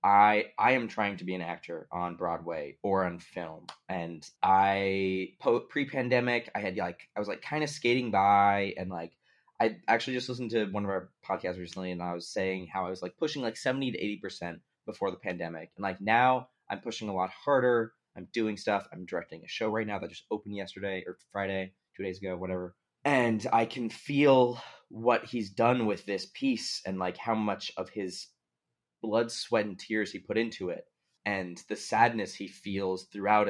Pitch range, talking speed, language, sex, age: 90-110 Hz, 200 wpm, English, male, 20-39